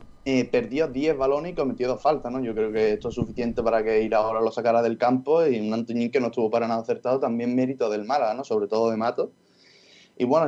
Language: Spanish